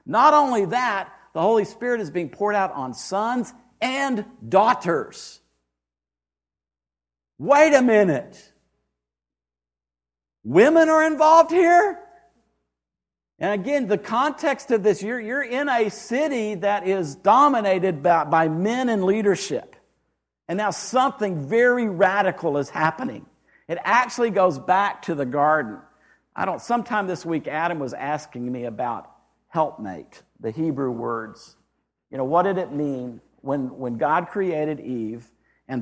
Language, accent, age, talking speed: English, American, 50-69, 135 wpm